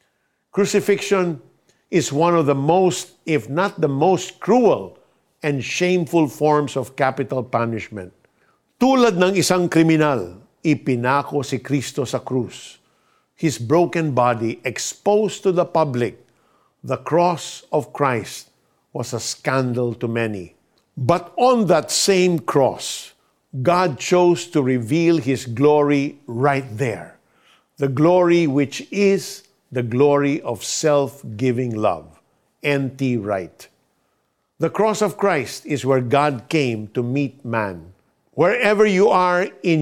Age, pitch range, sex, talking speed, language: 50-69, 125-165 Hz, male, 120 wpm, Filipino